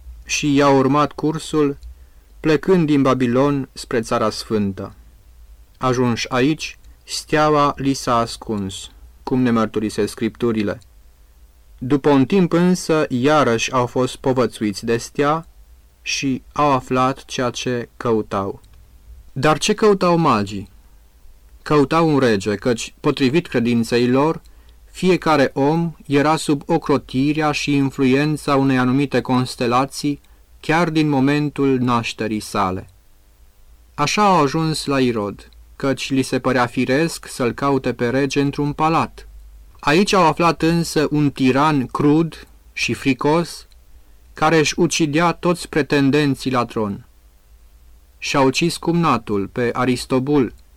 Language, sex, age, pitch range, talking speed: Romanian, male, 30-49, 105-150 Hz, 115 wpm